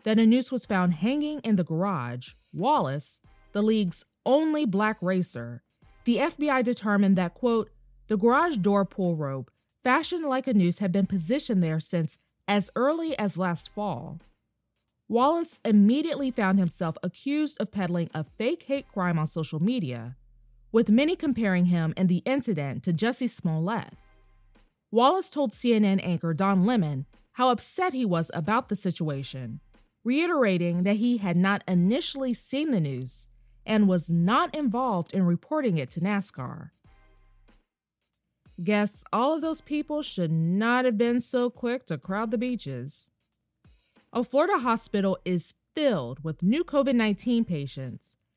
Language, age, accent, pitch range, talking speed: English, 20-39, American, 170-250 Hz, 145 wpm